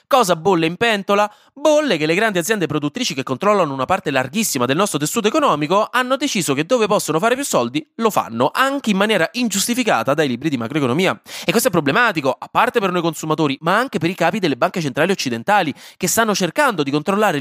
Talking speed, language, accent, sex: 205 wpm, Italian, native, male